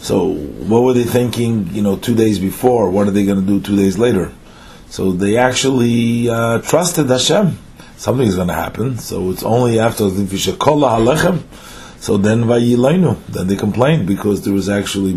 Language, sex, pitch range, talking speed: English, male, 90-115 Hz, 180 wpm